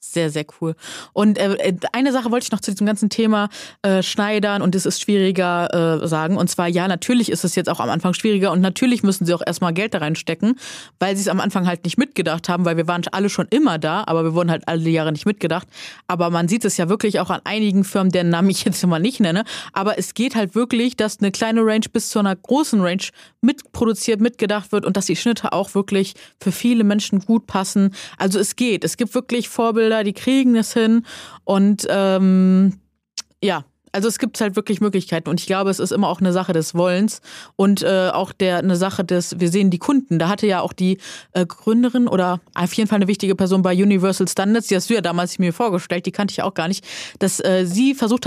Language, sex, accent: German, female, German